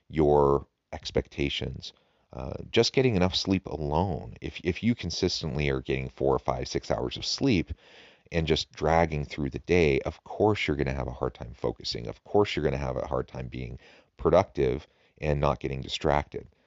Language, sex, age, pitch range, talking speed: English, male, 30-49, 70-80 Hz, 185 wpm